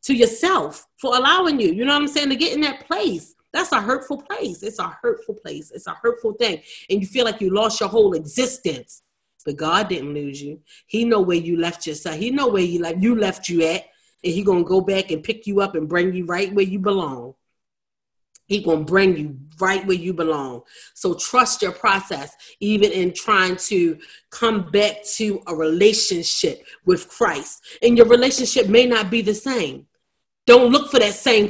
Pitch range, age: 185-245 Hz, 30-49